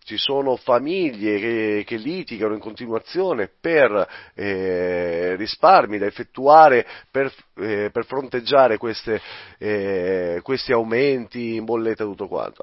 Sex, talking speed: male, 125 wpm